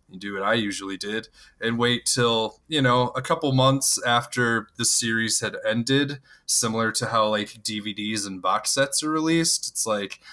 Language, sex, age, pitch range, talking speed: English, male, 20-39, 105-135 Hz, 180 wpm